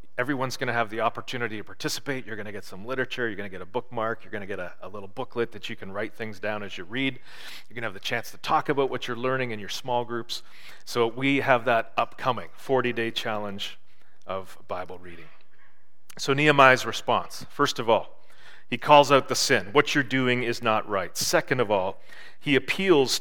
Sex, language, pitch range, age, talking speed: male, English, 115-155 Hz, 40-59, 220 wpm